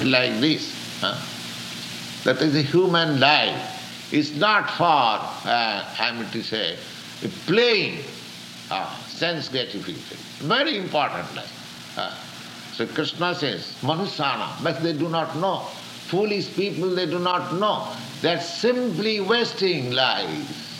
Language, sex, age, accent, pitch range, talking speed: English, male, 60-79, Indian, 115-185 Hz, 130 wpm